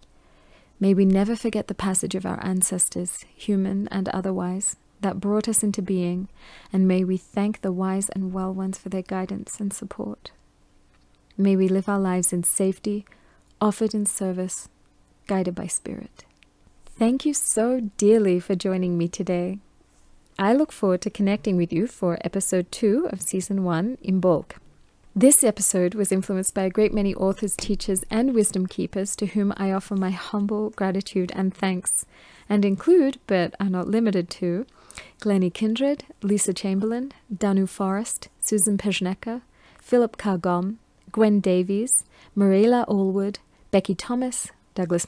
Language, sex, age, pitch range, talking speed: English, female, 30-49, 185-210 Hz, 150 wpm